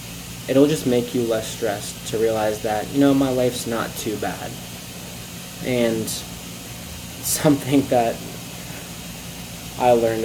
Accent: American